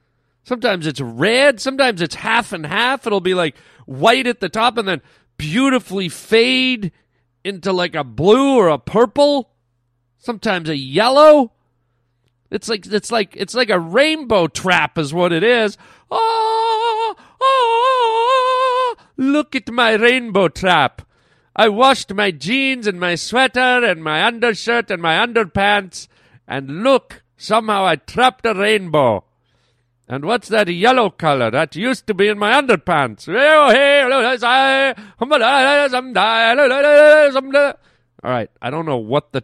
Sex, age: male, 40-59